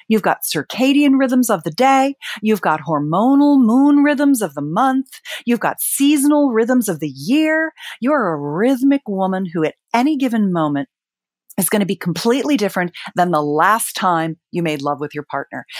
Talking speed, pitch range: 180 wpm, 190-300 Hz